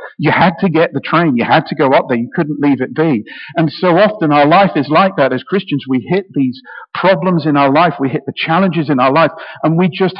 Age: 50-69